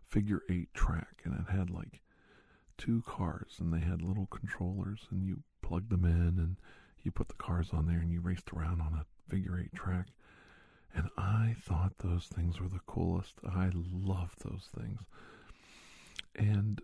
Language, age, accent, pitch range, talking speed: English, 50-69, American, 85-100 Hz, 170 wpm